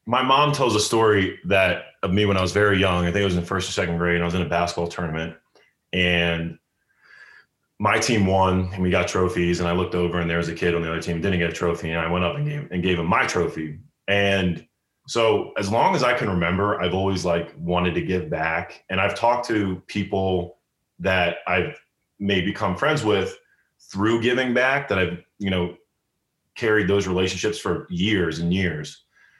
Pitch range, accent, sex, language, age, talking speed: 85-100 Hz, American, male, English, 20-39, 215 wpm